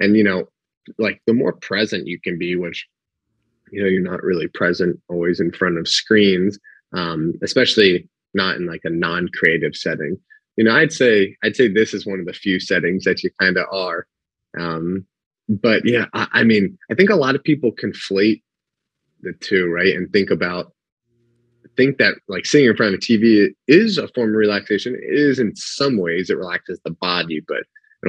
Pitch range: 95-150 Hz